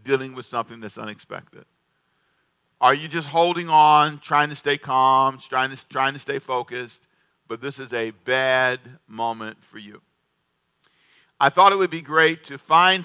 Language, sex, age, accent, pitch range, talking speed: English, male, 50-69, American, 120-155 Hz, 160 wpm